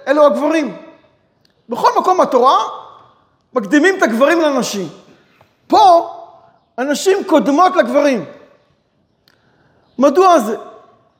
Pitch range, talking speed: 230-315 Hz, 80 wpm